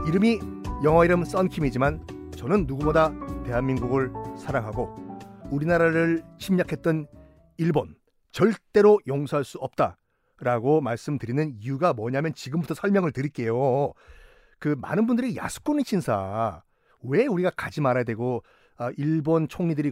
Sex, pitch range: male, 125-175 Hz